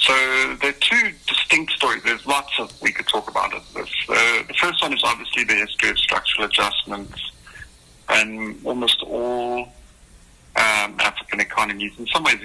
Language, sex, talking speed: English, male, 170 wpm